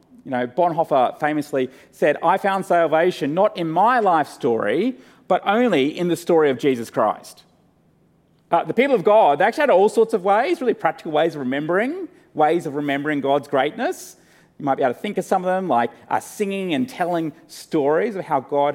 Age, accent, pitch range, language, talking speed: 30-49, Australian, 140-195 Hz, English, 200 wpm